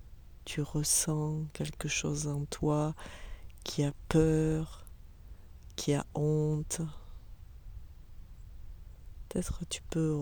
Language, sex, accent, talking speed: French, female, French, 90 wpm